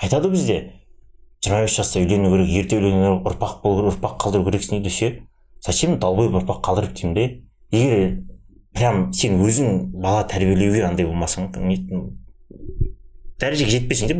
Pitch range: 95-120 Hz